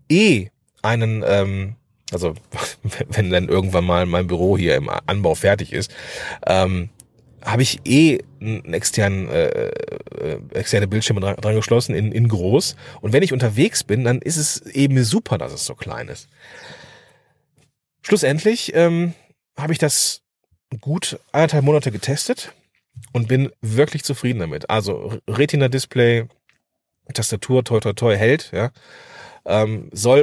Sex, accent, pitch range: male, German, 105-135 Hz